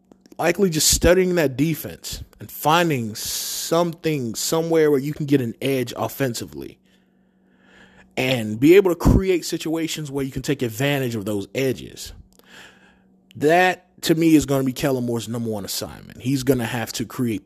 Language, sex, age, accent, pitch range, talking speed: English, male, 30-49, American, 110-150 Hz, 165 wpm